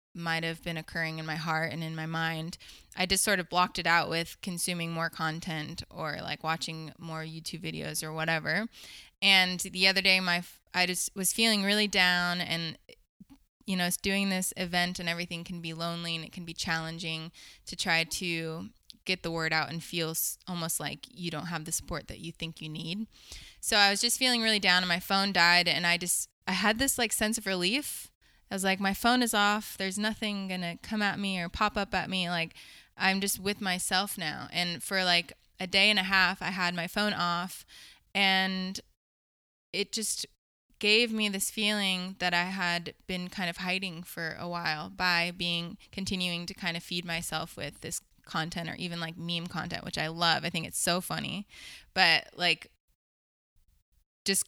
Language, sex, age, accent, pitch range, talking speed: English, female, 20-39, American, 165-195 Hz, 200 wpm